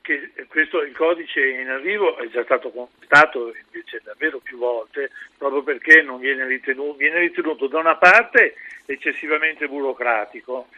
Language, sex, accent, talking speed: Italian, male, native, 140 wpm